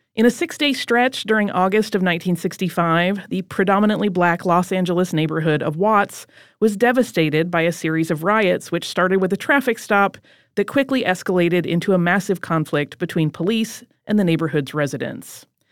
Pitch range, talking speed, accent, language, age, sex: 170-220 Hz, 160 wpm, American, English, 30-49, female